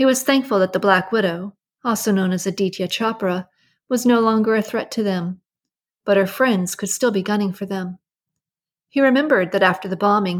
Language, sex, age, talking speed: English, female, 40-59, 195 wpm